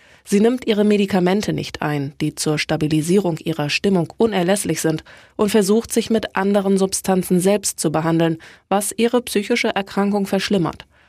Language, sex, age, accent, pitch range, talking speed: German, female, 20-39, German, 165-210 Hz, 145 wpm